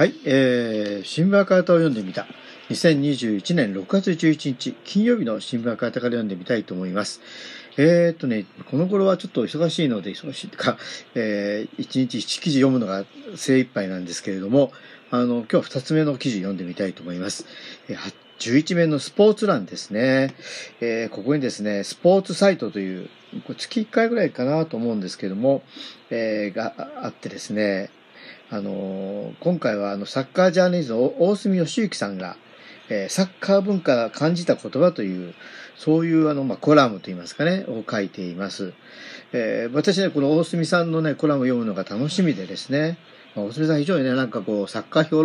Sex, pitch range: male, 105-170 Hz